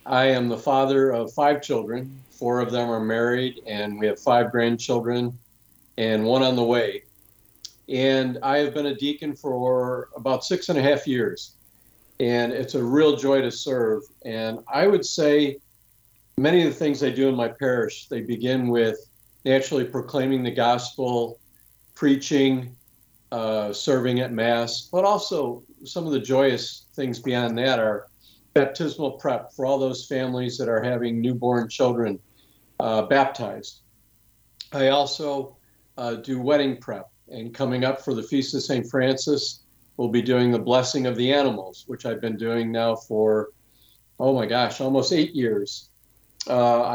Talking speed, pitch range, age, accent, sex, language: 160 wpm, 115-135 Hz, 50-69, American, male, English